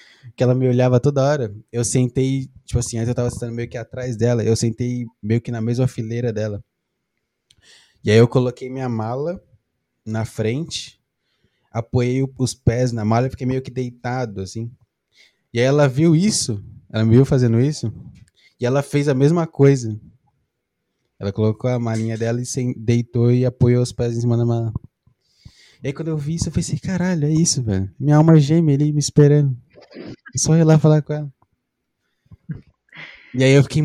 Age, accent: 20-39, Brazilian